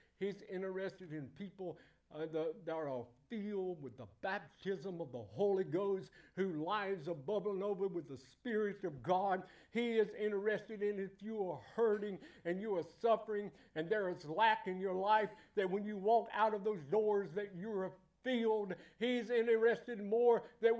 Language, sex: English, male